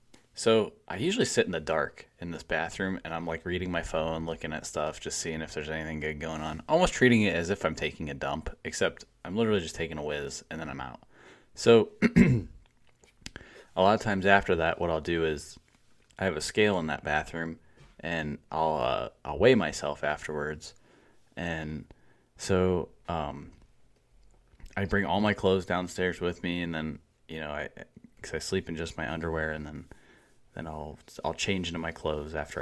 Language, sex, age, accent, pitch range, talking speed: English, male, 20-39, American, 80-100 Hz, 195 wpm